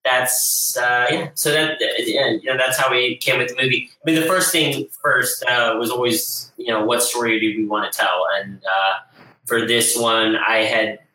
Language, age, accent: English, 20-39, American